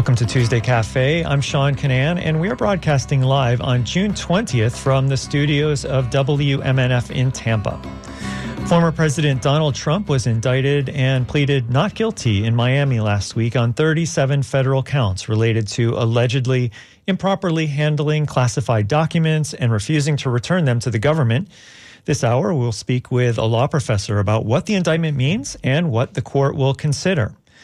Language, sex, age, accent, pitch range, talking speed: English, male, 40-59, American, 120-150 Hz, 160 wpm